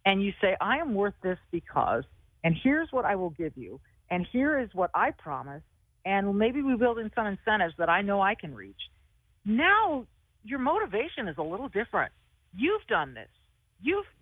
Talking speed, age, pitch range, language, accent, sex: 190 wpm, 50-69, 180-255 Hz, English, American, female